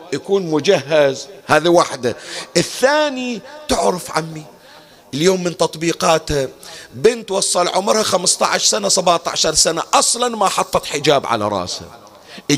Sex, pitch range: male, 145-200 Hz